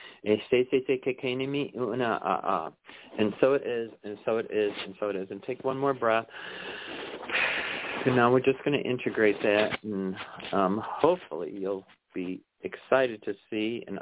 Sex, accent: male, American